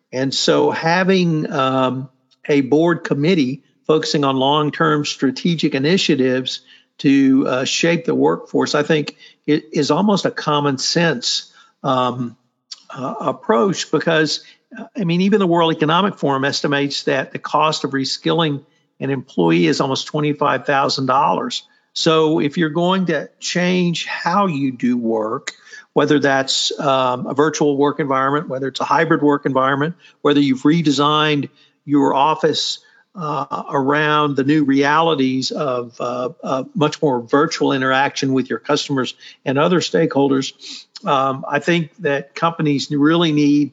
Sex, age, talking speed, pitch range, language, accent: male, 50-69, 135 wpm, 135-160 Hz, English, American